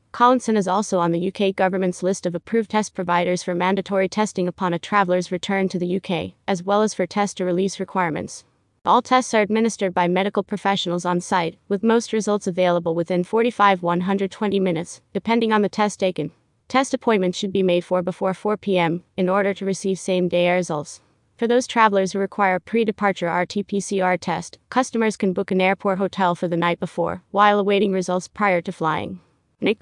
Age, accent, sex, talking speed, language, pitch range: 30-49, American, female, 180 wpm, English, 180-205 Hz